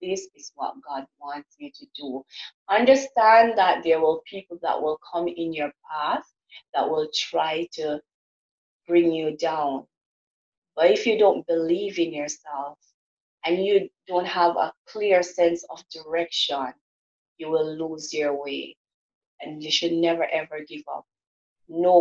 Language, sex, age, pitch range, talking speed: English, female, 30-49, 155-185 Hz, 150 wpm